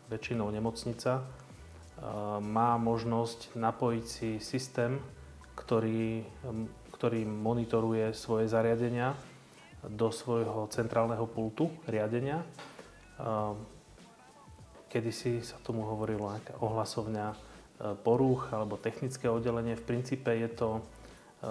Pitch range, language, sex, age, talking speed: 110-125 Hz, Slovak, male, 30-49, 85 wpm